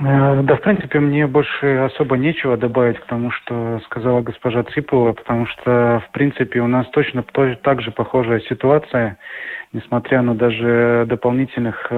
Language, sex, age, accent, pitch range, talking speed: Russian, male, 20-39, native, 115-130 Hz, 140 wpm